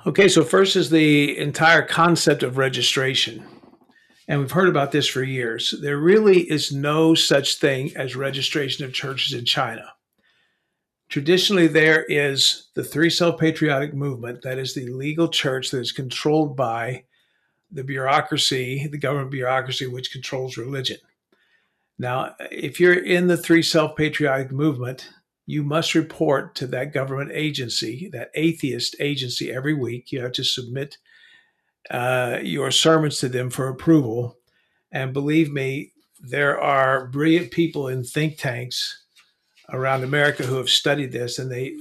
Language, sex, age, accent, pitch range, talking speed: English, male, 50-69, American, 130-160 Hz, 145 wpm